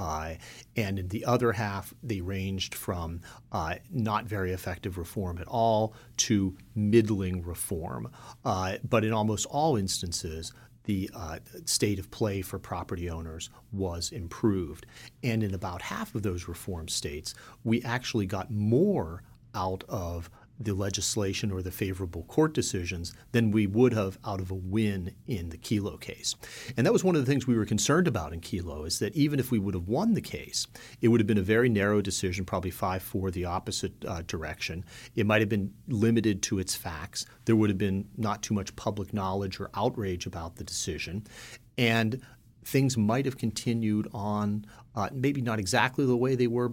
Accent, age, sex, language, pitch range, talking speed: American, 40-59, male, English, 95-120 Hz, 180 wpm